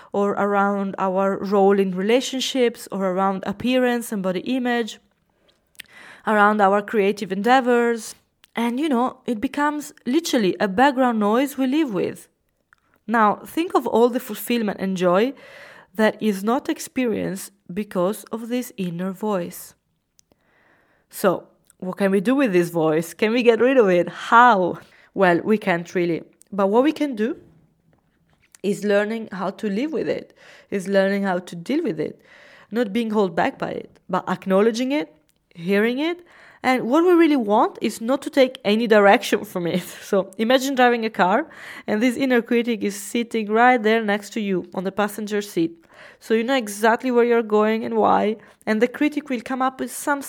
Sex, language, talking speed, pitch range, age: female, English, 170 wpm, 200-255 Hz, 20-39